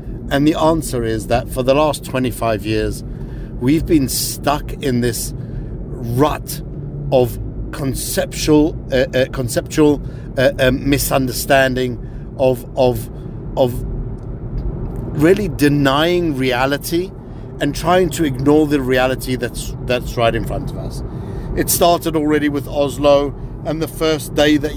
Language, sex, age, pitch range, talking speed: English, male, 50-69, 125-155 Hz, 130 wpm